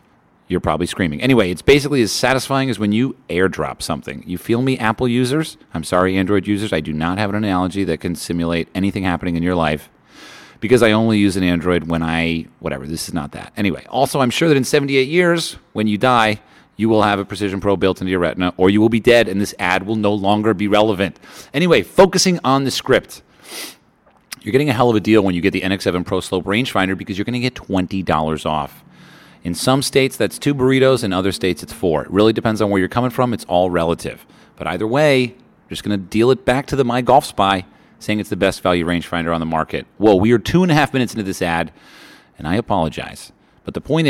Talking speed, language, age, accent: 235 wpm, English, 40-59, American